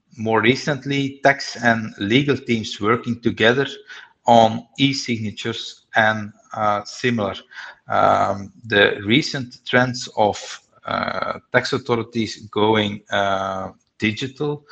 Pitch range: 110-125 Hz